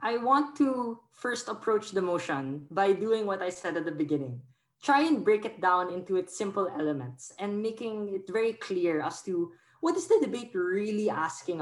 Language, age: English, 20-39